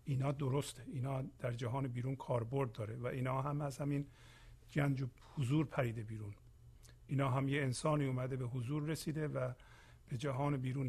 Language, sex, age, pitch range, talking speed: Persian, male, 50-69, 120-155 Hz, 160 wpm